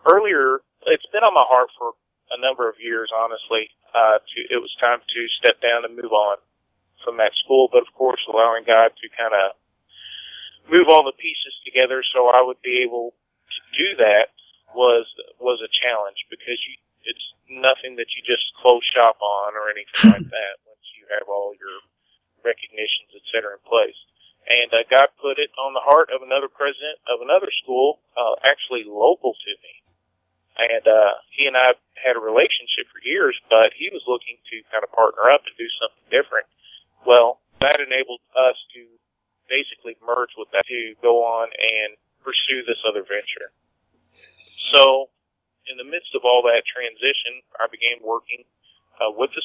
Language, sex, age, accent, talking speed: English, male, 40-59, American, 175 wpm